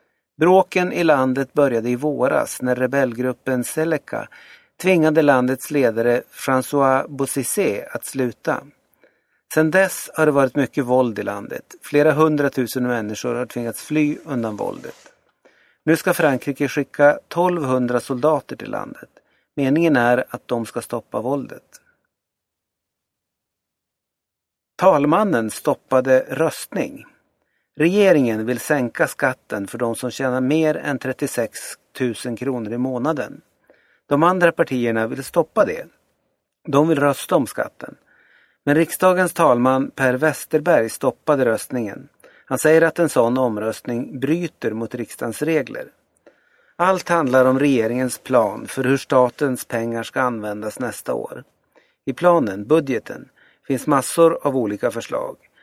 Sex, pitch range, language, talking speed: male, 120-155 Hz, Swedish, 125 wpm